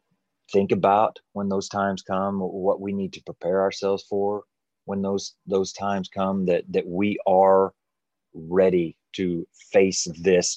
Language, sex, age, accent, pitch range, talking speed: English, male, 30-49, American, 90-100 Hz, 150 wpm